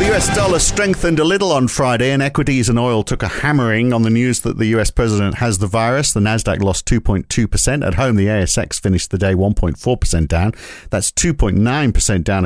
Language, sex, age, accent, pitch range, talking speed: English, male, 50-69, British, 100-135 Hz, 195 wpm